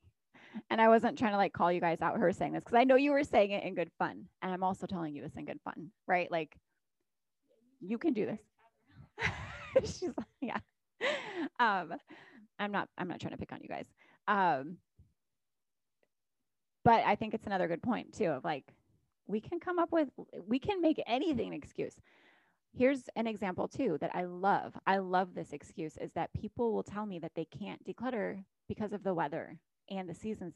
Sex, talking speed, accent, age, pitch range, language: female, 195 wpm, American, 20-39, 170-225 Hz, English